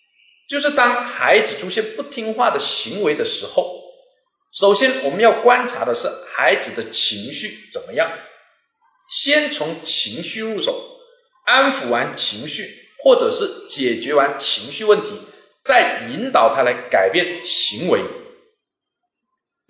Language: Chinese